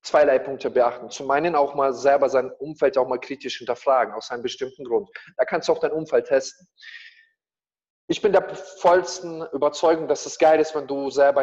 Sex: male